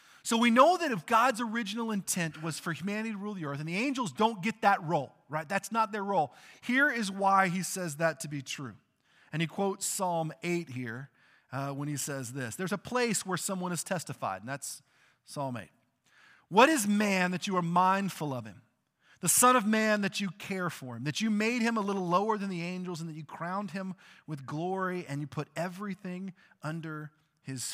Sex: male